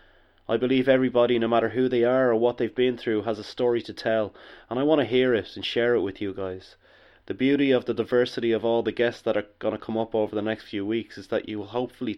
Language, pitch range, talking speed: English, 105-120 Hz, 270 wpm